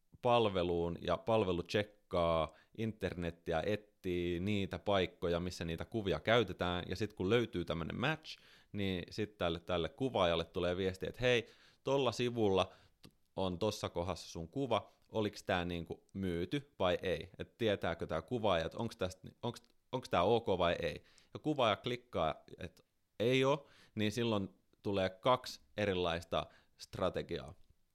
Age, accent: 30-49, native